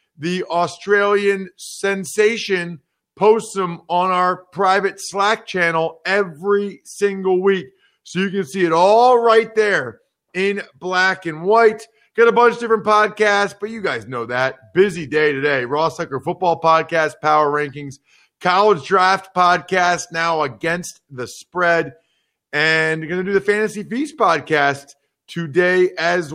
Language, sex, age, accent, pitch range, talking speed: English, male, 40-59, American, 160-205 Hz, 145 wpm